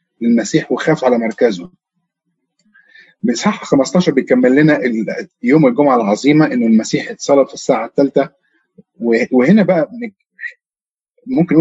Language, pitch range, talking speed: Arabic, 135-215 Hz, 105 wpm